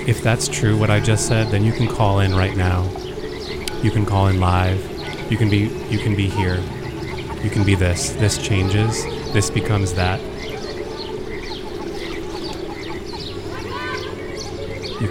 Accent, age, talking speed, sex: American, 30-49, 145 wpm, male